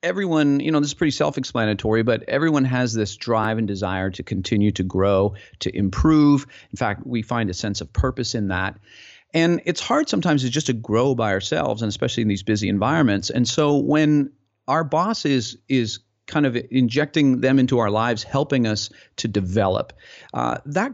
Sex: male